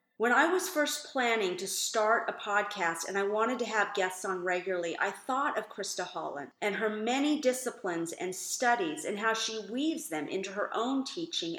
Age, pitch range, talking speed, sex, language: 40-59, 185-250 Hz, 190 wpm, female, English